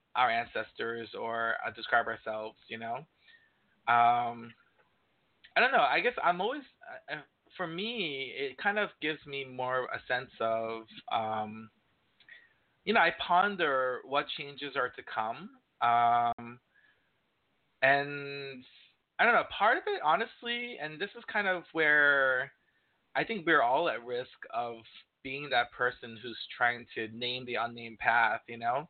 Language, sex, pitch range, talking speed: English, male, 120-180 Hz, 150 wpm